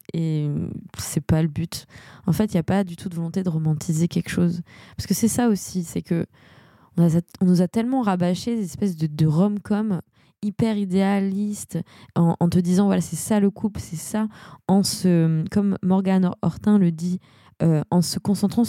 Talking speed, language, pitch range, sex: 200 wpm, French, 160-195 Hz, female